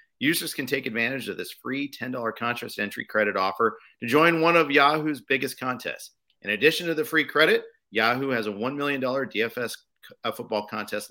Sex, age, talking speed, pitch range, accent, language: male, 40-59, 180 wpm, 115-160 Hz, American, English